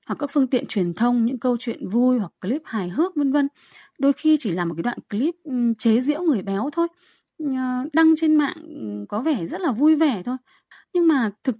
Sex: female